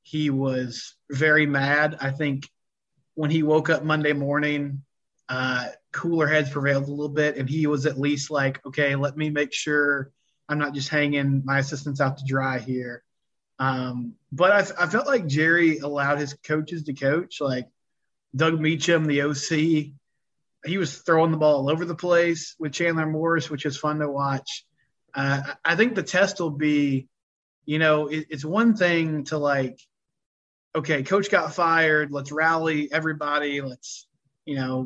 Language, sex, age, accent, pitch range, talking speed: English, male, 30-49, American, 140-160 Hz, 170 wpm